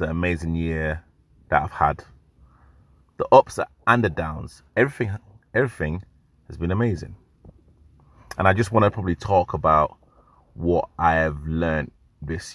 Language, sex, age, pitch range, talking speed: English, male, 30-49, 80-105 Hz, 140 wpm